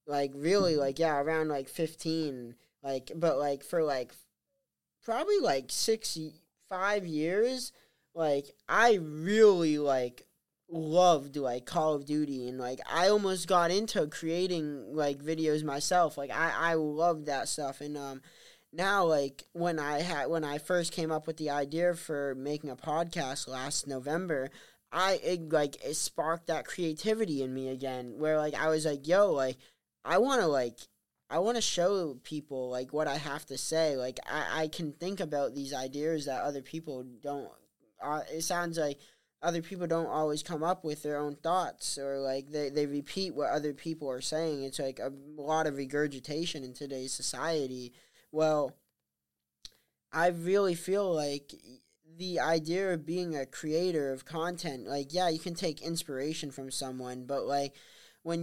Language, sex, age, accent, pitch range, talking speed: English, male, 20-39, American, 140-165 Hz, 170 wpm